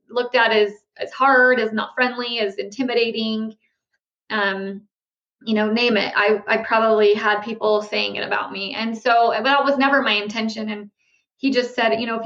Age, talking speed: 20-39, 185 wpm